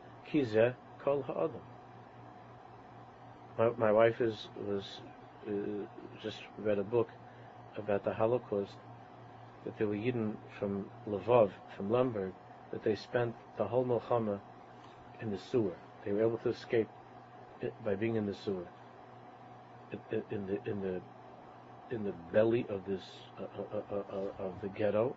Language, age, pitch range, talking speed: English, 50-69, 100-115 Hz, 150 wpm